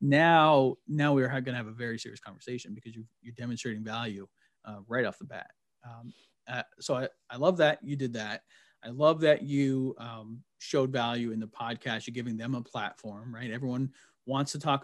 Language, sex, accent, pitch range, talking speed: English, male, American, 120-145 Hz, 205 wpm